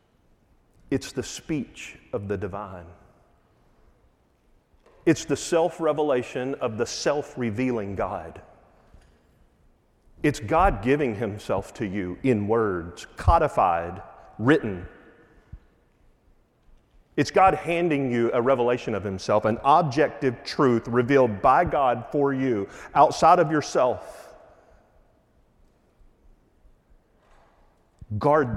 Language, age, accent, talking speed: English, 40-59, American, 90 wpm